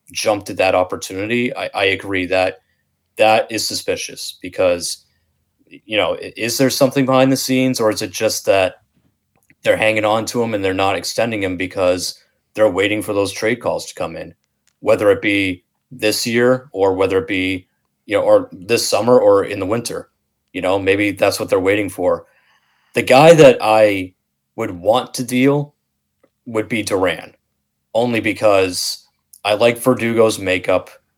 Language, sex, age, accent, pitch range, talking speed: English, male, 30-49, American, 95-115 Hz, 170 wpm